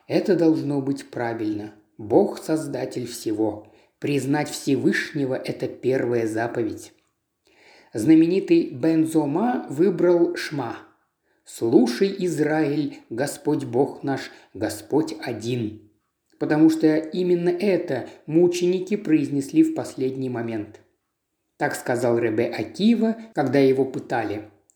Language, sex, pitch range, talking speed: Russian, male, 125-180 Hz, 95 wpm